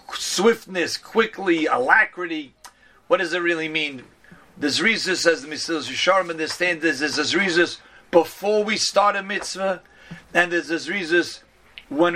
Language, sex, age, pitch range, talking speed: English, male, 40-59, 160-200 Hz, 140 wpm